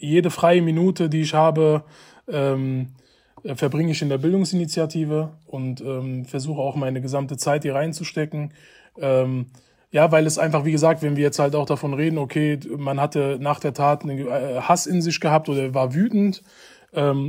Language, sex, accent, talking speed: German, male, German, 175 wpm